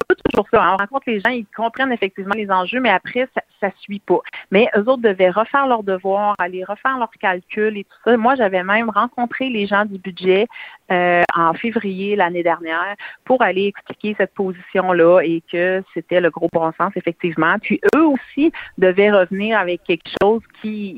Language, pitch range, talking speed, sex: French, 170-220 Hz, 190 wpm, female